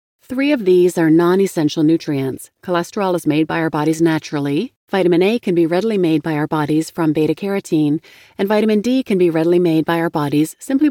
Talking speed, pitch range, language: 195 wpm, 155-205 Hz, English